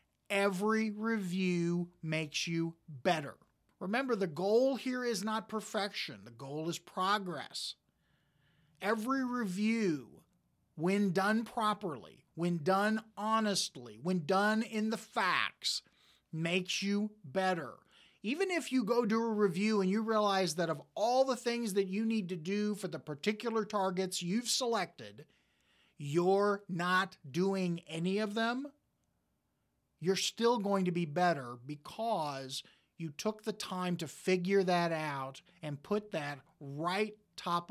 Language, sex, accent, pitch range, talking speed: English, male, American, 175-220 Hz, 135 wpm